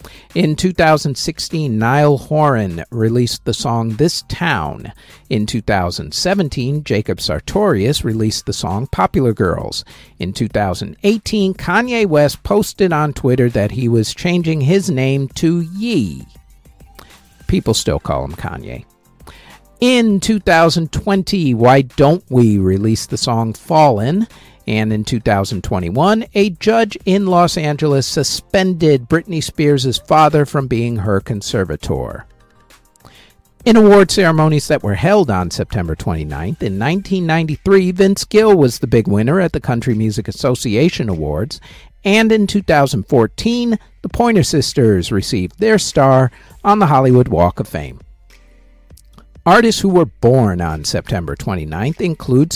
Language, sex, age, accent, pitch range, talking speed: English, male, 50-69, American, 110-180 Hz, 125 wpm